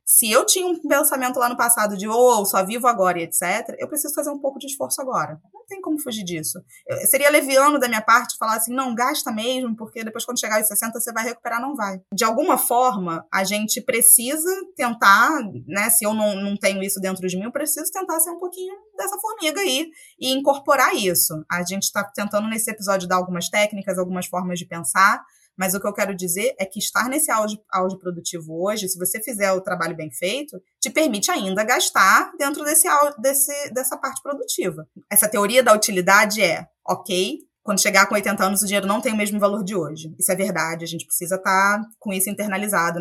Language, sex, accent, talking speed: Portuguese, female, Brazilian, 210 wpm